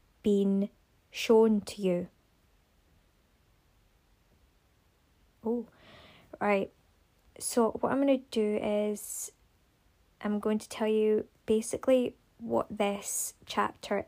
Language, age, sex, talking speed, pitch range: English, 20-39, female, 95 wpm, 190-215 Hz